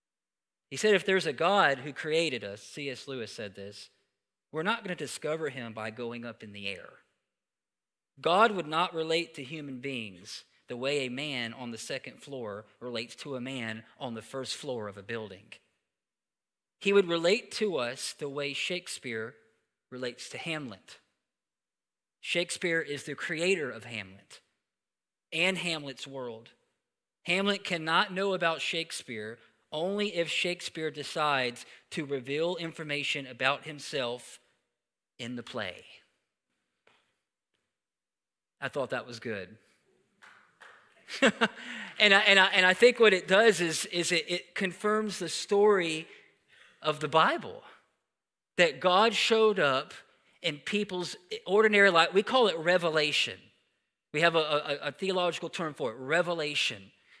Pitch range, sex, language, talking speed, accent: 125-180 Hz, male, English, 140 wpm, American